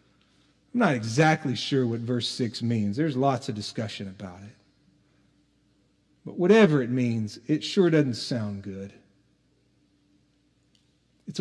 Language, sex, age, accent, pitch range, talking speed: English, male, 40-59, American, 130-180 Hz, 125 wpm